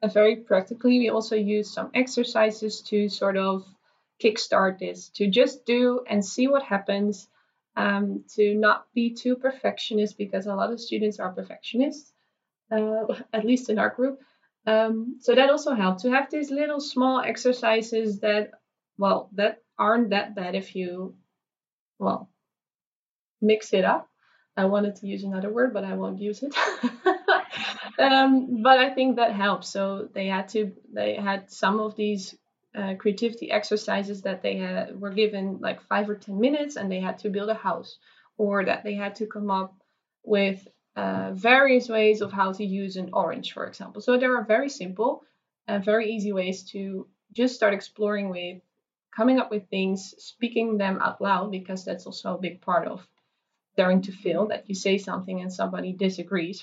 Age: 20-39